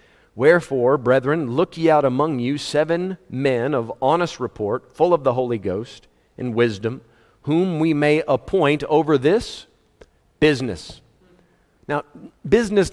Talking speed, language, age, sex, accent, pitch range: 130 wpm, English, 40-59, male, American, 130-180 Hz